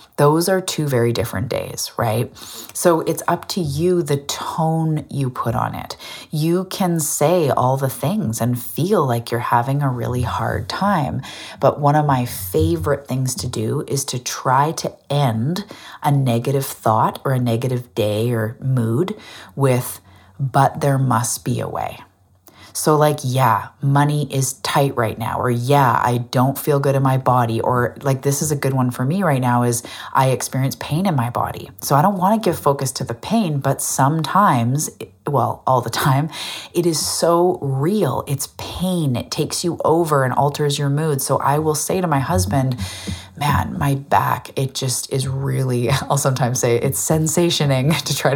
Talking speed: 180 wpm